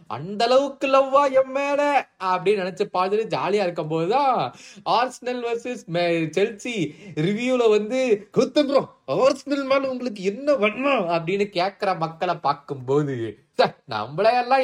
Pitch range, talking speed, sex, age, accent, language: 150-215 Hz, 85 wpm, male, 20-39, native, Tamil